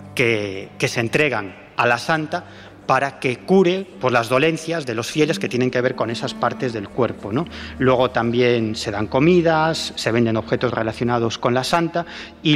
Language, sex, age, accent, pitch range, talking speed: Spanish, male, 30-49, Spanish, 120-160 Hz, 190 wpm